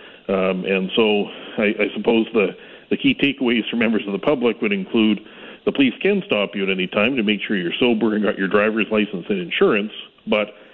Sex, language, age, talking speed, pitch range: male, English, 40-59, 210 wpm, 95-115 Hz